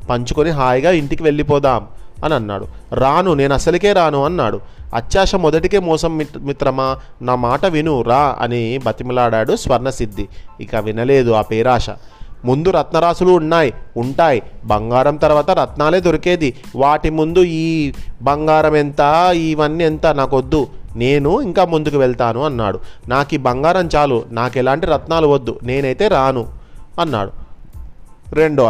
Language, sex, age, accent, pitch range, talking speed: Telugu, male, 30-49, native, 120-155 Hz, 125 wpm